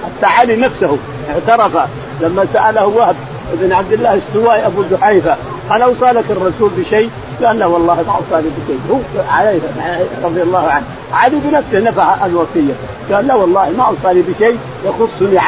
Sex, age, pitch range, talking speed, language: male, 50-69, 170-235 Hz, 145 wpm, Arabic